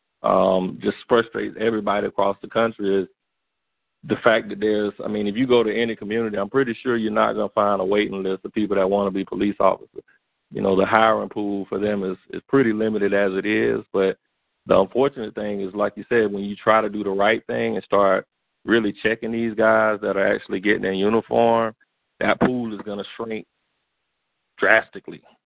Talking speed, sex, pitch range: 205 wpm, male, 95-110 Hz